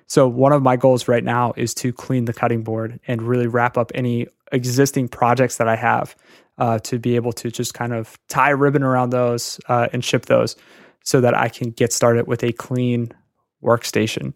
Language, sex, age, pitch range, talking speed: English, male, 20-39, 120-130 Hz, 210 wpm